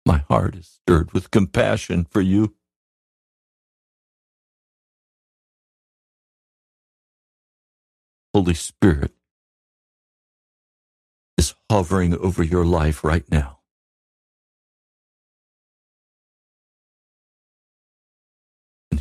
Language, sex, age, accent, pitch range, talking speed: English, male, 50-69, American, 70-95 Hz, 55 wpm